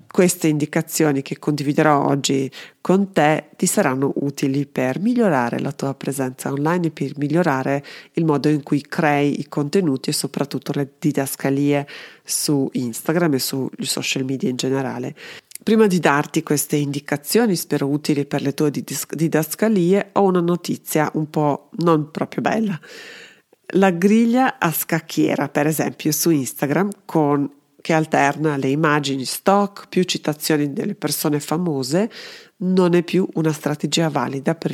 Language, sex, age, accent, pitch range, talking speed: Italian, female, 40-59, native, 145-185 Hz, 145 wpm